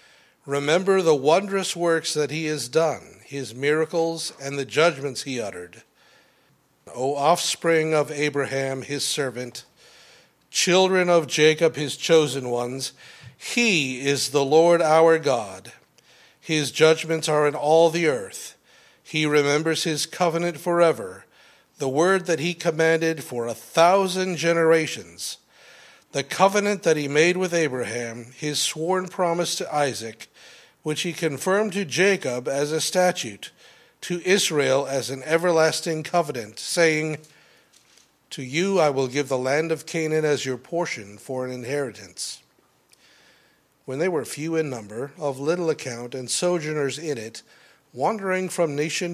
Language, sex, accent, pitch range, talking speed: English, male, American, 135-170 Hz, 135 wpm